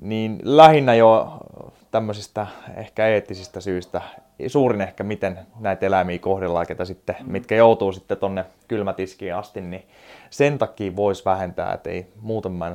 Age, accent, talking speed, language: 20-39, native, 135 wpm, Finnish